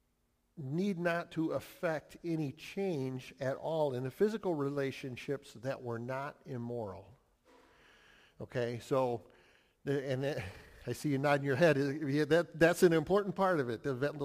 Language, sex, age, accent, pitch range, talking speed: English, male, 50-69, American, 125-160 Hz, 135 wpm